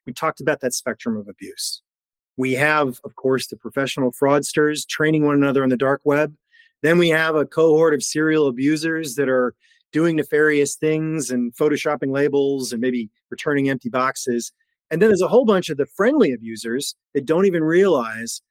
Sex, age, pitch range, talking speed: male, 30-49, 125-165 Hz, 180 wpm